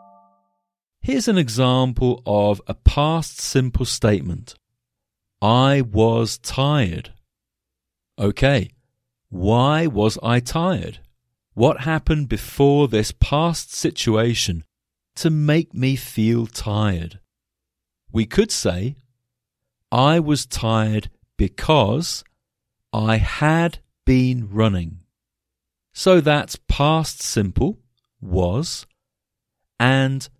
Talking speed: 85 wpm